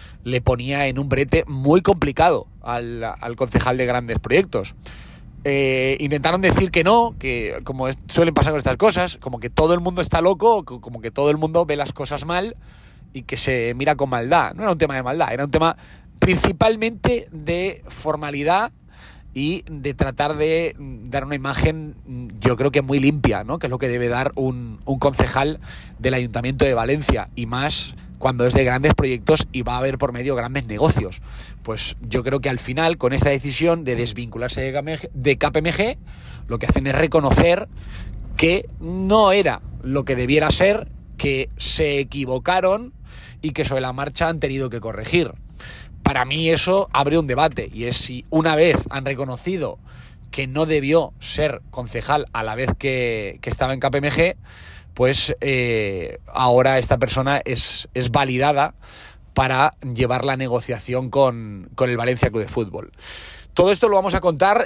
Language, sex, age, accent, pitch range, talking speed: Spanish, male, 30-49, Spanish, 125-155 Hz, 175 wpm